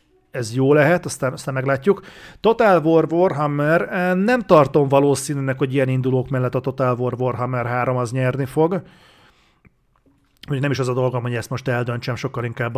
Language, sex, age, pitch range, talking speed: Hungarian, male, 40-59, 130-160 Hz, 165 wpm